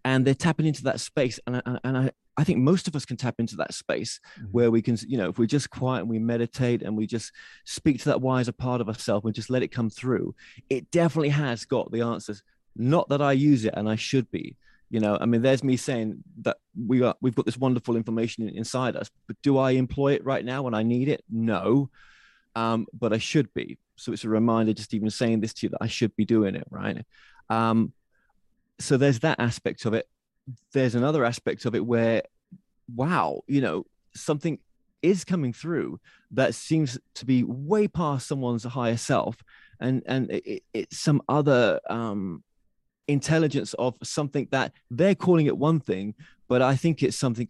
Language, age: English, 20-39